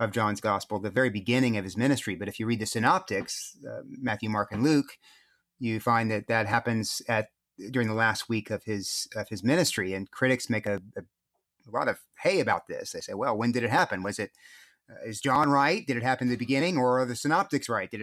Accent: American